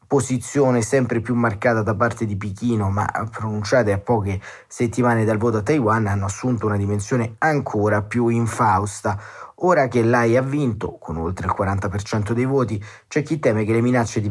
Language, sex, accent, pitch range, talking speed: Italian, male, native, 105-125 Hz, 175 wpm